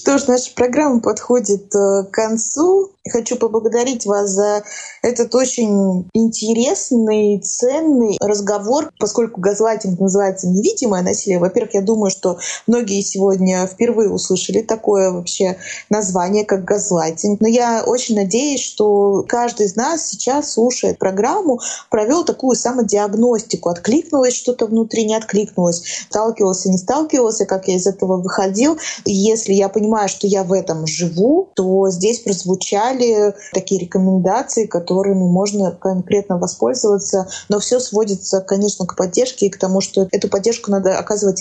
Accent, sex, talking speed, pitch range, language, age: native, female, 135 wpm, 190-230 Hz, Russian, 20-39